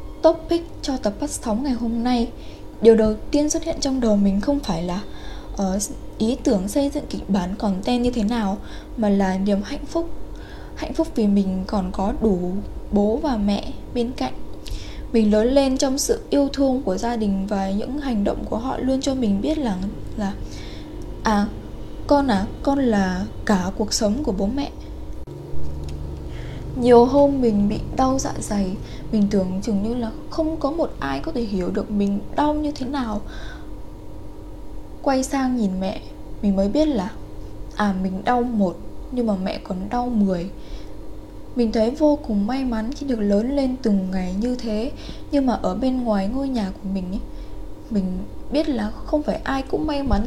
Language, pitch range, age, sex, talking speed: Vietnamese, 195-270 Hz, 10-29, female, 185 wpm